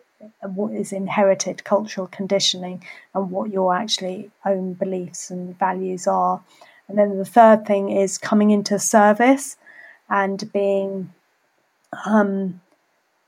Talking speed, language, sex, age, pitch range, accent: 115 wpm, English, female, 30-49, 190-210 Hz, British